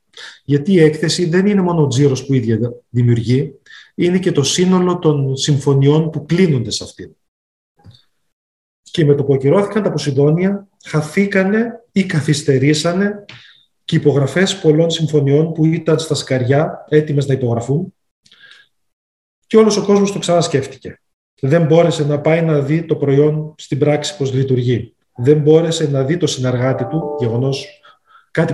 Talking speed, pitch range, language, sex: 145 wpm, 130-170 Hz, Greek, male